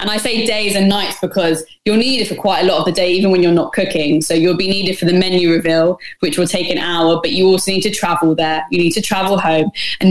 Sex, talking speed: female, 285 wpm